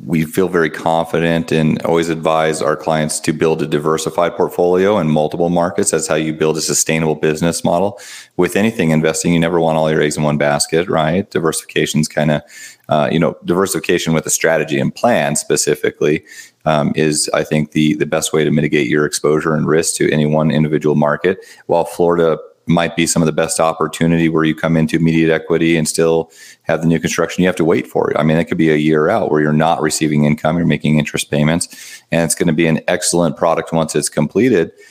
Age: 30-49